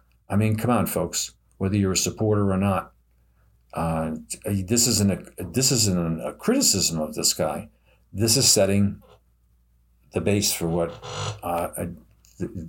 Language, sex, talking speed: English, male, 145 wpm